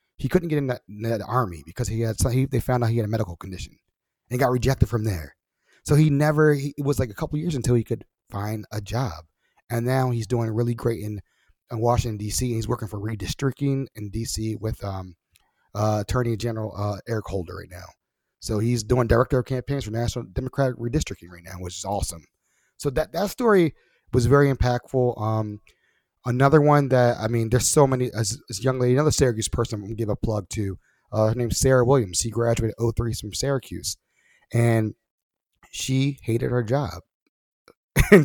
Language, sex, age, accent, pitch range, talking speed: English, male, 30-49, American, 110-130 Hz, 200 wpm